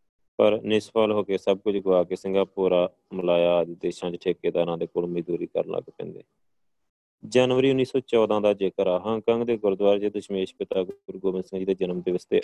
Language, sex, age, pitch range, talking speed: Punjabi, male, 20-39, 90-110 Hz, 185 wpm